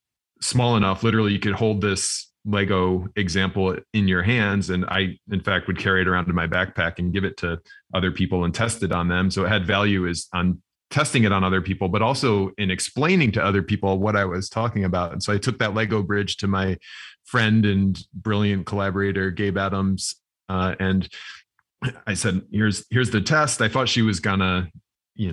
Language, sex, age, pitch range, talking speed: English, male, 30-49, 95-110 Hz, 205 wpm